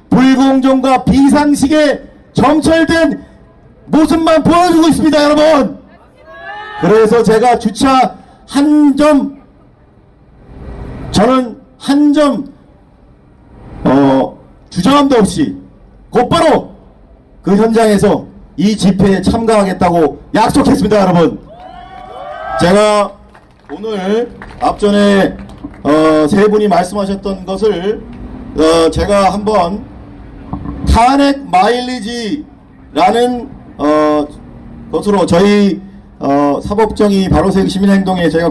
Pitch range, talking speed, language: 180-265 Hz, 75 wpm, English